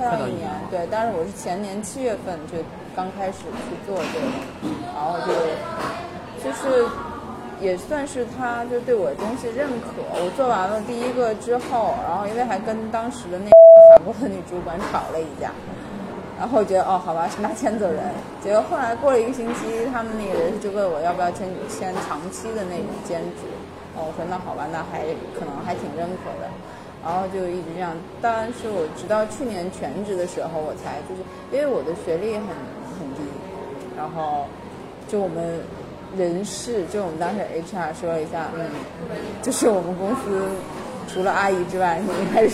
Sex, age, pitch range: female, 20-39, 185-245 Hz